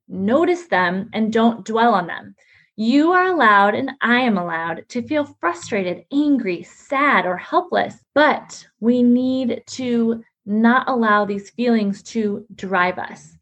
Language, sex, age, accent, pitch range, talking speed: English, female, 20-39, American, 200-265 Hz, 145 wpm